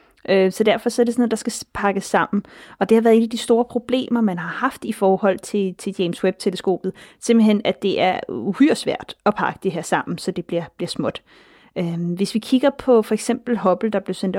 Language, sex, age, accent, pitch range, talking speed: Danish, female, 30-49, native, 195-235 Hz, 220 wpm